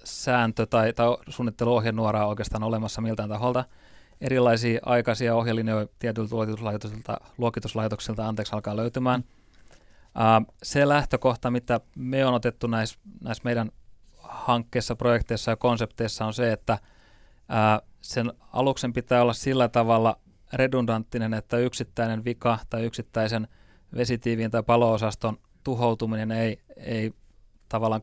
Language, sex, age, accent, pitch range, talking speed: Finnish, male, 30-49, native, 110-120 Hz, 120 wpm